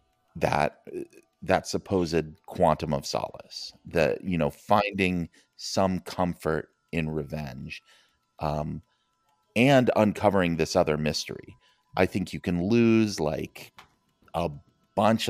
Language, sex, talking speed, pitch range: English, male, 110 wpm, 80-100 Hz